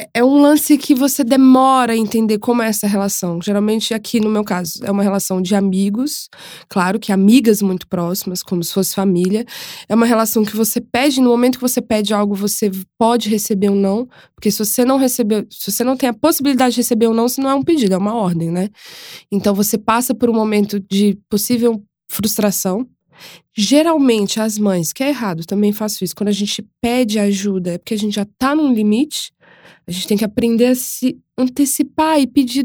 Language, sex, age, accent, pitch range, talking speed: Portuguese, female, 20-39, Brazilian, 210-270 Hz, 210 wpm